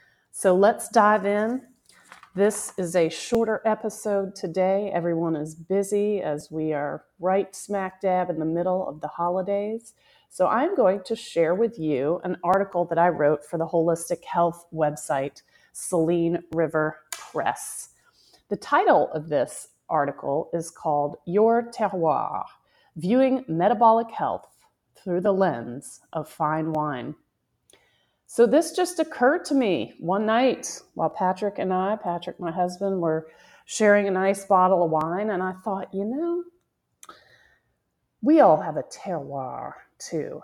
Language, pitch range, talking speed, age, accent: English, 165-210 Hz, 140 wpm, 30-49, American